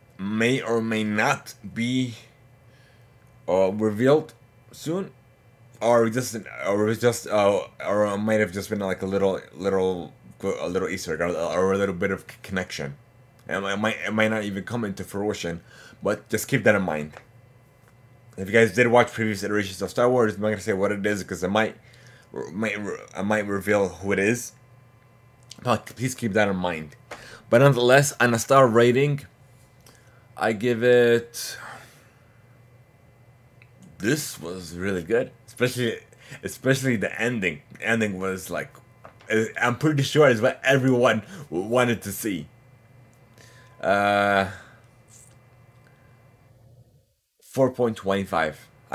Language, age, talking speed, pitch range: English, 20-39, 140 wpm, 100-125 Hz